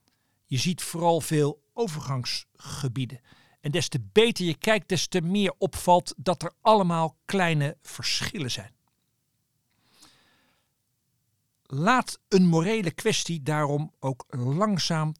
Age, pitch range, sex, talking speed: 50-69, 135-190 Hz, male, 110 wpm